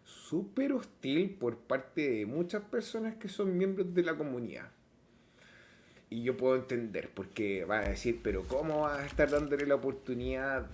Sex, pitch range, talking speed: male, 110-160 Hz, 160 wpm